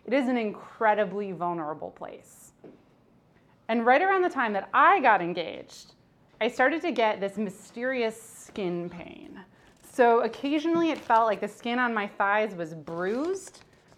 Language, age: English, 20-39